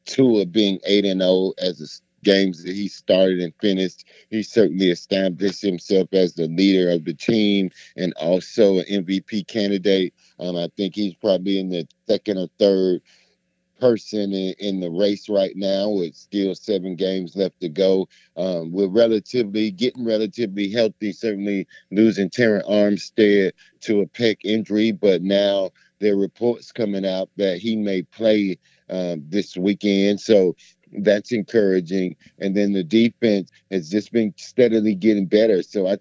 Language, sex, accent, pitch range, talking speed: English, male, American, 95-105 Hz, 160 wpm